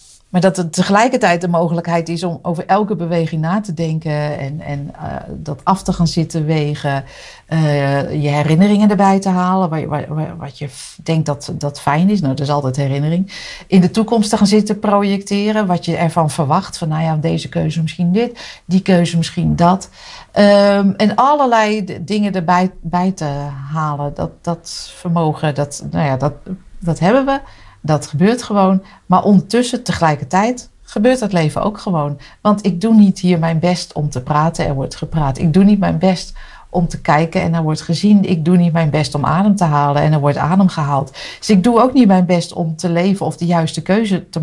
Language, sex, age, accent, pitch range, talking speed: Dutch, female, 50-69, Dutch, 150-190 Hz, 205 wpm